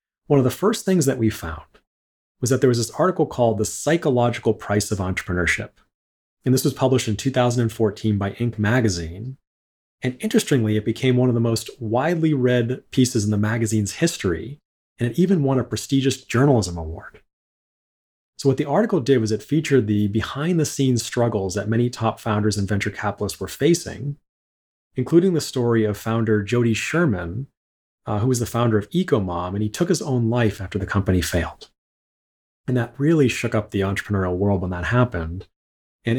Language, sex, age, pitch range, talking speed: English, male, 30-49, 100-130 Hz, 180 wpm